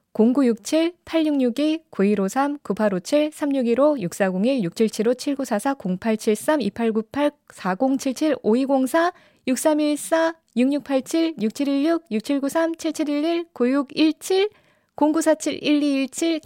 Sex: female